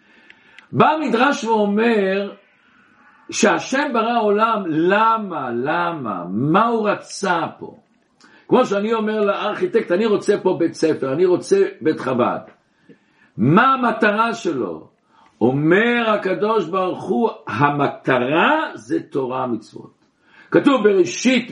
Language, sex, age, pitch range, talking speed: Hebrew, male, 60-79, 185-255 Hz, 105 wpm